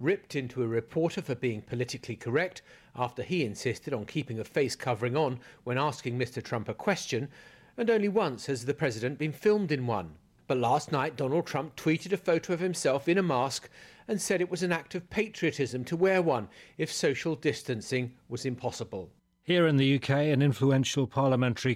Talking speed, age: 190 wpm, 40-59